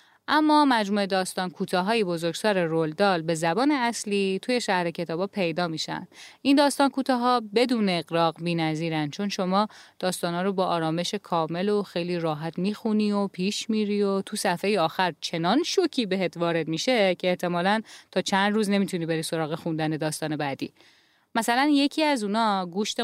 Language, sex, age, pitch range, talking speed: Persian, female, 10-29, 170-230 Hz, 160 wpm